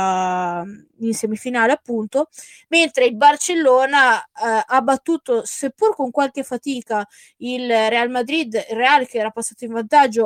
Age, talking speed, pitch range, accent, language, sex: 20-39, 135 wpm, 220-265 Hz, native, Italian, female